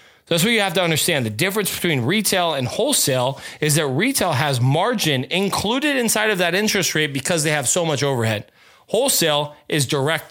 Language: English